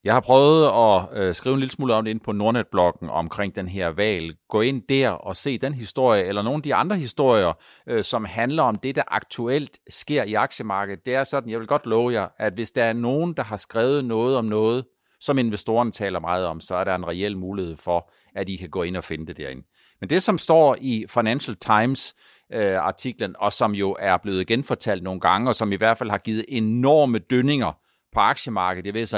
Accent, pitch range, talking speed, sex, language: native, 100-135 Hz, 220 wpm, male, Danish